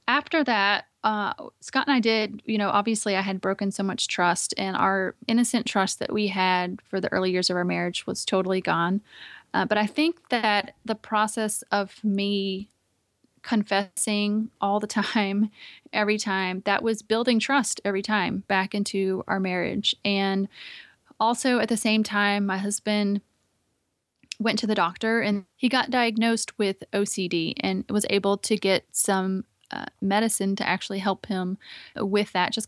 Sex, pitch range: female, 190-220 Hz